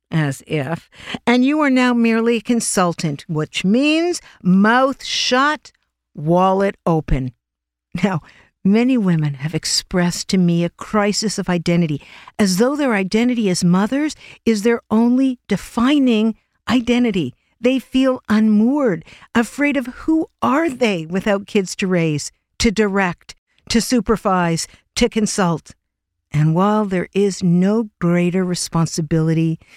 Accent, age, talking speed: American, 50-69, 125 wpm